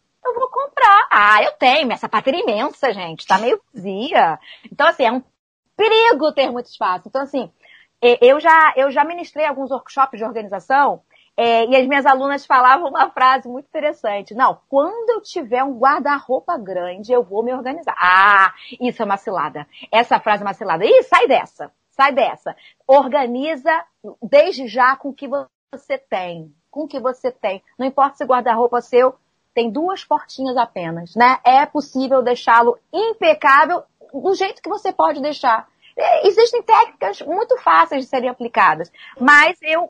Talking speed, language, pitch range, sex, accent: 165 wpm, Portuguese, 225-305 Hz, female, Brazilian